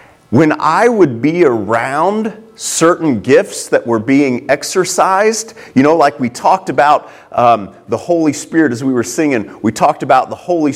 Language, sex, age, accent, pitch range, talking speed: English, male, 40-59, American, 160-245 Hz, 165 wpm